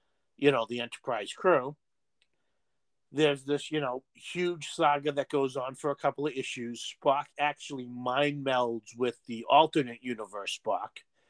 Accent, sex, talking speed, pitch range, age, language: American, male, 150 wpm, 125-155 Hz, 50-69, English